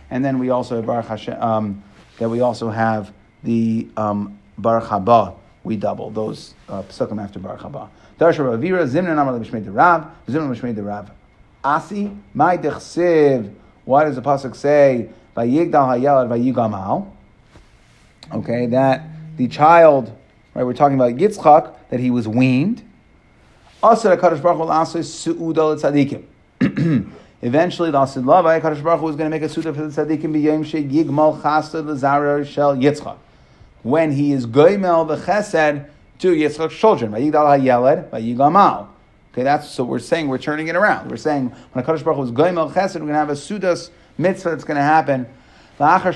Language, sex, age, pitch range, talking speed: English, male, 30-49, 125-165 Hz, 135 wpm